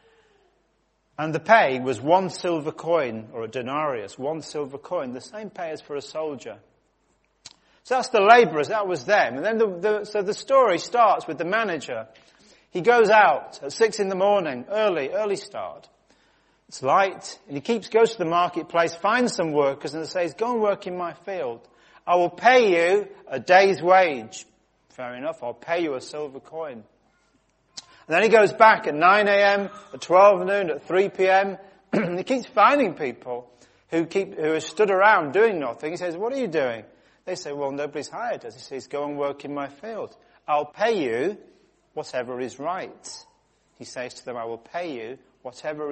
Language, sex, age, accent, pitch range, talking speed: English, male, 40-59, British, 145-210 Hz, 190 wpm